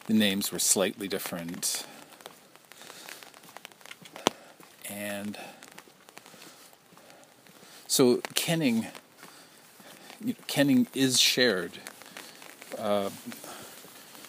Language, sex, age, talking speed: English, male, 50-69, 50 wpm